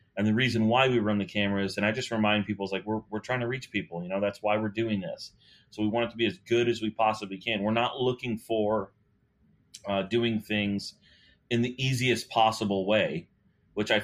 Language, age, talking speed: English, 30-49, 230 wpm